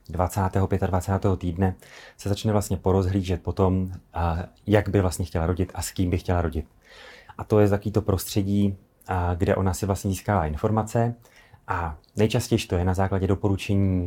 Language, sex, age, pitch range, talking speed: Czech, male, 30-49, 90-100 Hz, 160 wpm